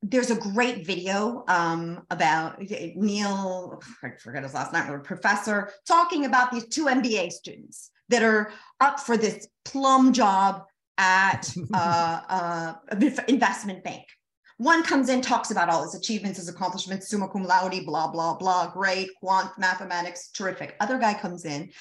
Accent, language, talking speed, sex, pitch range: American, English, 150 wpm, female, 185-250 Hz